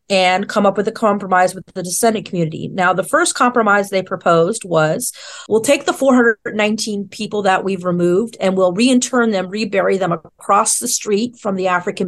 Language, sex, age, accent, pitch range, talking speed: English, female, 40-59, American, 175-225 Hz, 185 wpm